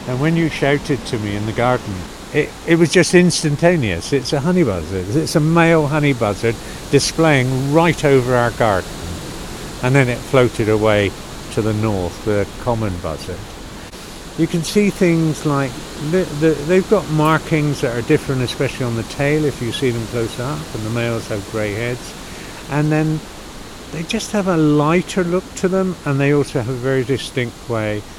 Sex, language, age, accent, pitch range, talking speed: male, English, 60-79, British, 110-150 Hz, 180 wpm